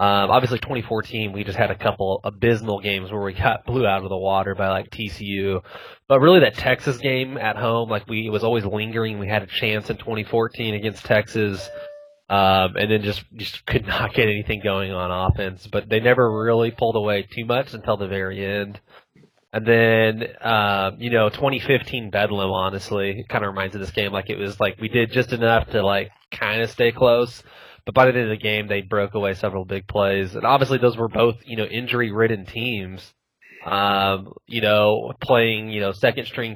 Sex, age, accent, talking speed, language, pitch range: male, 20-39, American, 205 wpm, English, 100-115 Hz